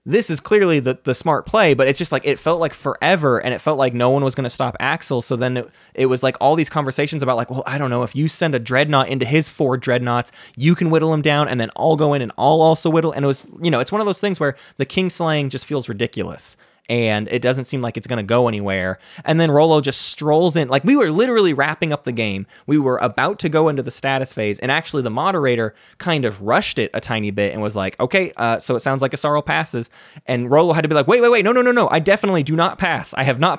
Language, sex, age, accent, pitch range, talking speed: English, male, 20-39, American, 120-160 Hz, 280 wpm